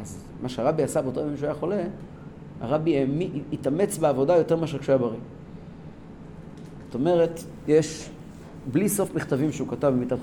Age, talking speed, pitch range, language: 40-59, 145 wpm, 130-175 Hz, Hebrew